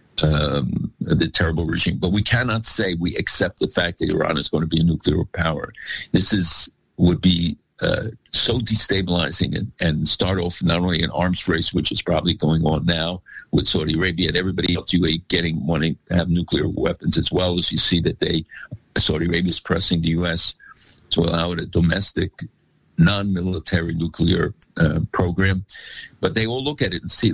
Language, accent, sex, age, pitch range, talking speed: English, American, male, 50-69, 85-95 Hz, 190 wpm